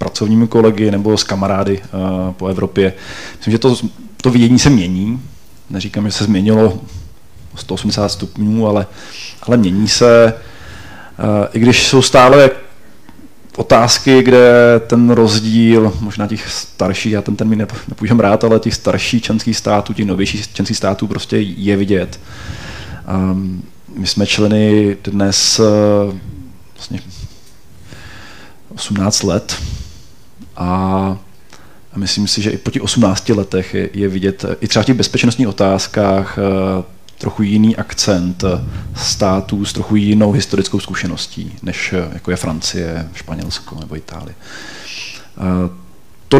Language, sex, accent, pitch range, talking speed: Czech, male, native, 95-110 Hz, 125 wpm